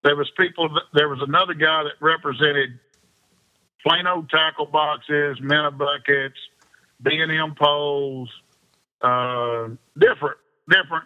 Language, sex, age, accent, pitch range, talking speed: English, male, 50-69, American, 135-155 Hz, 110 wpm